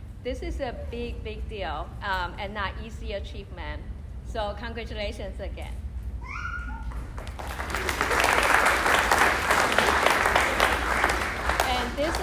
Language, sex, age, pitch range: Chinese, female, 30-49, 70-95 Hz